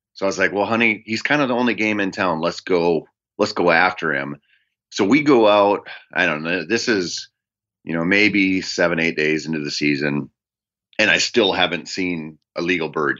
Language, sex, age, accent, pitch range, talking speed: English, male, 30-49, American, 85-110 Hz, 210 wpm